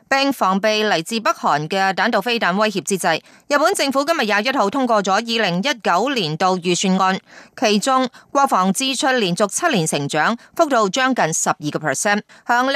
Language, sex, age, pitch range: Chinese, female, 20-39, 195-260 Hz